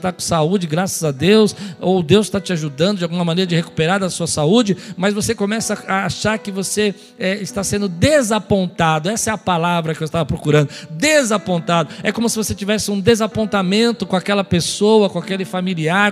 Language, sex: Portuguese, male